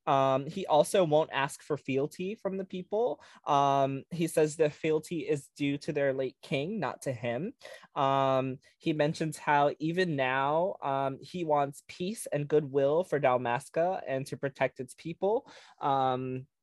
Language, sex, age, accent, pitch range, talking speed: English, male, 20-39, American, 135-170 Hz, 160 wpm